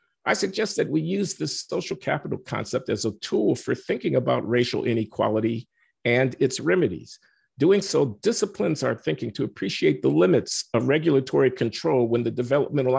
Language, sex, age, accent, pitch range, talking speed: English, male, 50-69, American, 110-140 Hz, 160 wpm